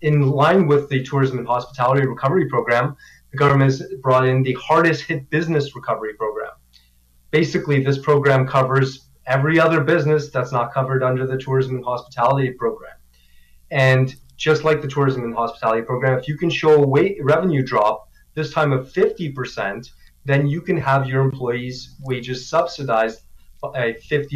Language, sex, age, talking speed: English, male, 20-39, 160 wpm